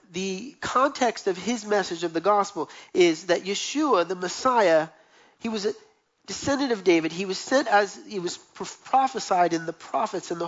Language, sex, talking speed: English, male, 180 wpm